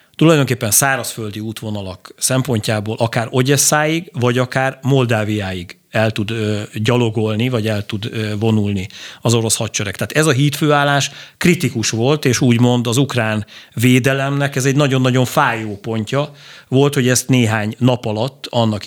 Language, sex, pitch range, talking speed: Hungarian, male, 110-135 Hz, 135 wpm